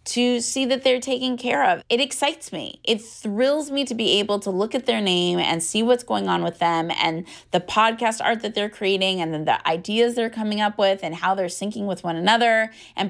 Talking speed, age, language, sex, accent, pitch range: 235 wpm, 30-49, English, female, American, 190-240 Hz